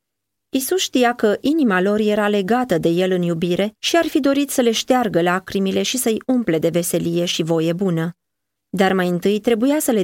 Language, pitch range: Romanian, 170-215 Hz